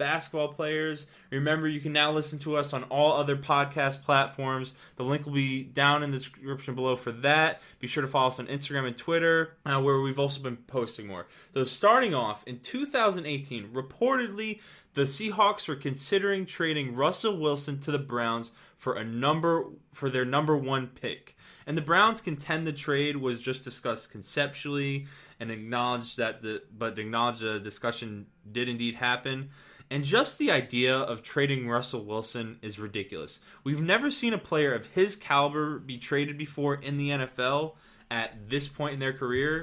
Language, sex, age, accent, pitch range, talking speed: English, male, 20-39, American, 125-155 Hz, 175 wpm